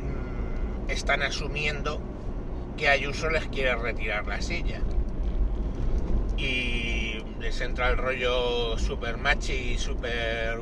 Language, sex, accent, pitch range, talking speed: Spanish, male, Spanish, 100-120 Hz, 100 wpm